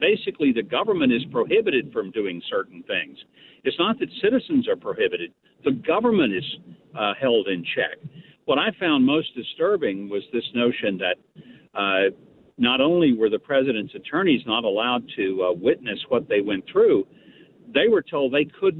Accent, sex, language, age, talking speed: American, male, English, 60-79, 165 wpm